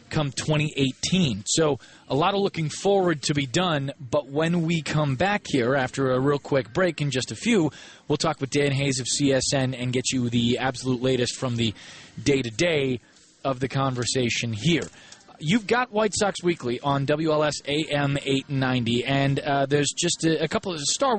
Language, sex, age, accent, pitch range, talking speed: English, male, 20-39, American, 130-155 Hz, 180 wpm